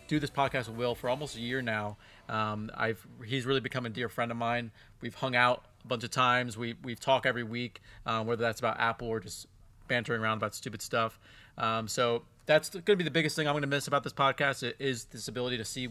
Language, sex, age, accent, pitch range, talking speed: English, male, 30-49, American, 110-130 Hz, 245 wpm